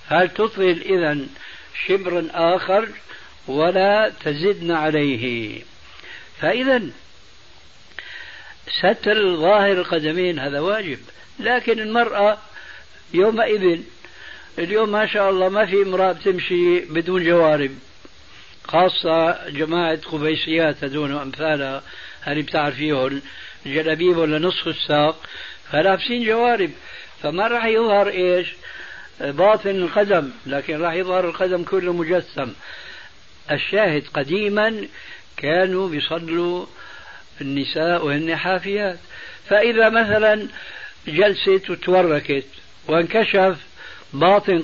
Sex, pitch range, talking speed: male, 155-205 Hz, 85 wpm